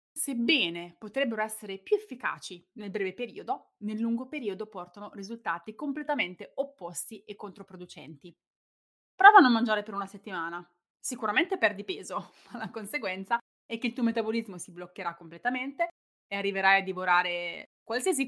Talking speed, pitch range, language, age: 140 wpm, 180-240 Hz, Italian, 20-39